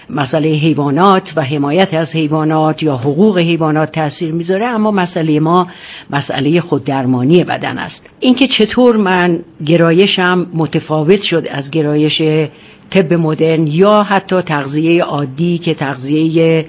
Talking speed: 125 wpm